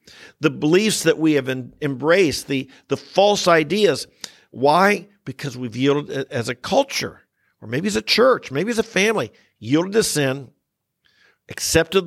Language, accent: English, American